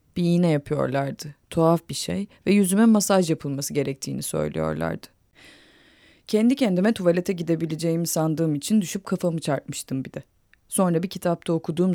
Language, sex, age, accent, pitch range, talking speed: Turkish, female, 30-49, native, 145-190 Hz, 135 wpm